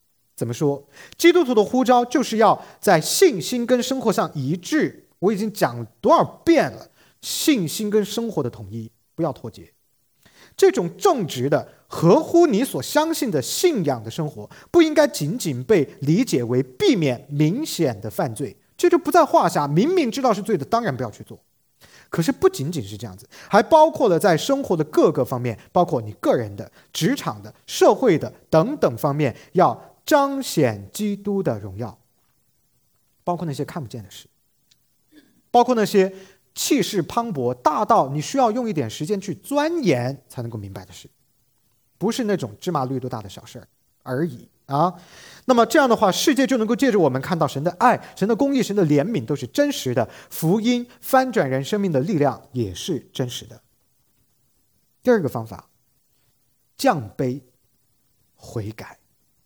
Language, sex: English, male